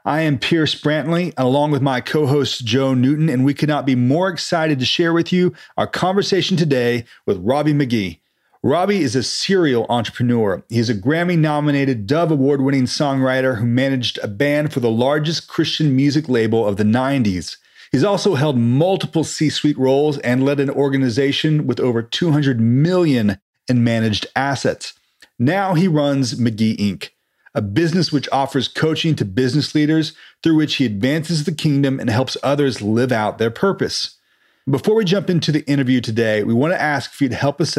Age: 40-59